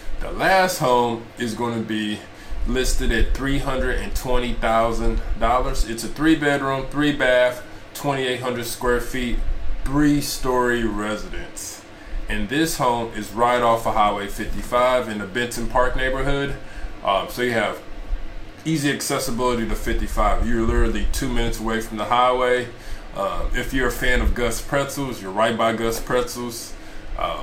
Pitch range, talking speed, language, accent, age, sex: 110-125 Hz, 140 wpm, English, American, 20-39, male